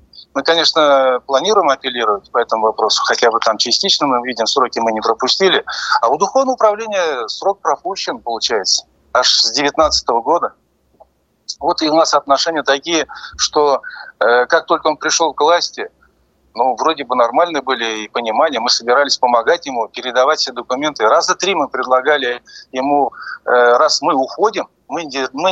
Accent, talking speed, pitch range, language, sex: native, 160 wpm, 125-170 Hz, Russian, male